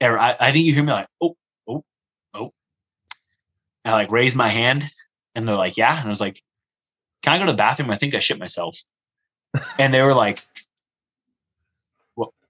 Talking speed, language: 180 wpm, English